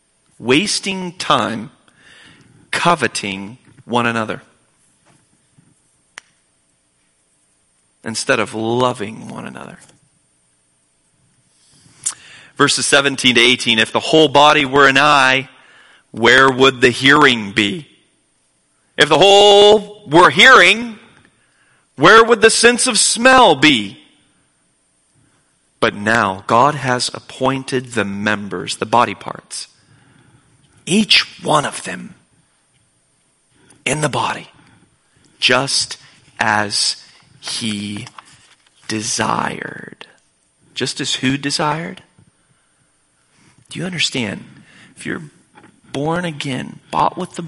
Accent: American